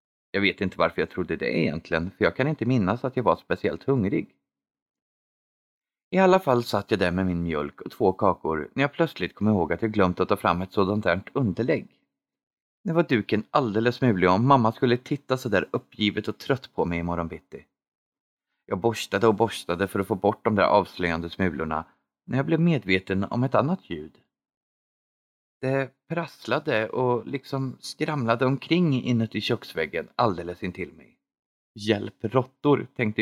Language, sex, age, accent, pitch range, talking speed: Swedish, male, 30-49, native, 95-135 Hz, 175 wpm